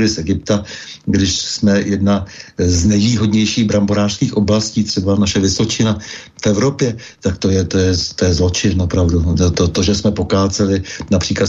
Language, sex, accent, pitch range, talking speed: Czech, male, native, 95-110 Hz, 145 wpm